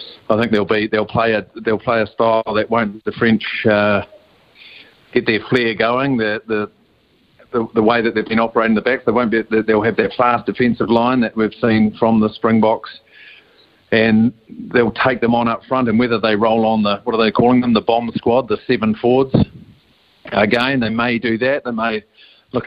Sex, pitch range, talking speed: male, 110-125 Hz, 205 wpm